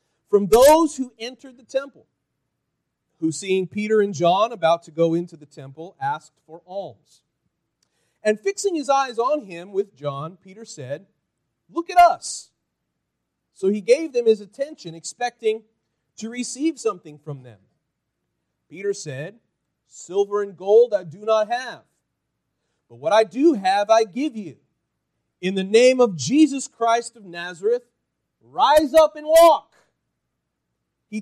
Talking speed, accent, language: 145 wpm, American, English